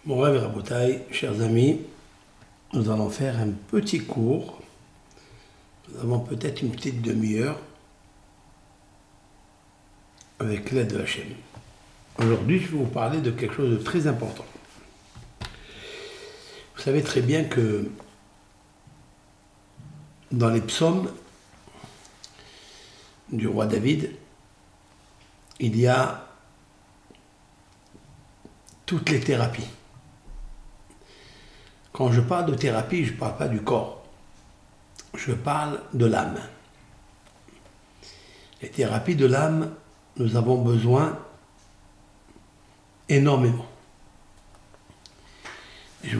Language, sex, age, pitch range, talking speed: French, male, 60-79, 100-140 Hz, 95 wpm